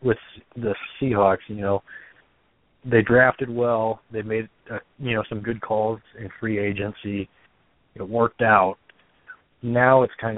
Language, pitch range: English, 95-110 Hz